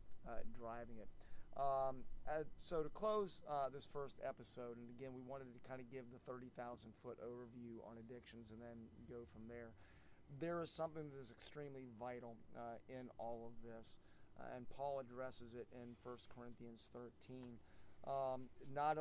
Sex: male